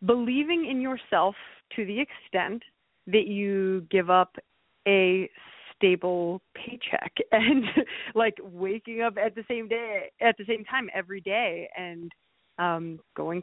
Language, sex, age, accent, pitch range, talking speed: English, female, 20-39, American, 185-240 Hz, 135 wpm